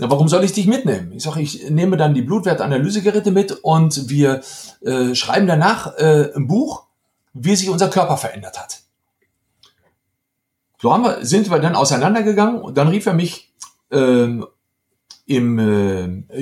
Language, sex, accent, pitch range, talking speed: German, male, German, 130-180 Hz, 155 wpm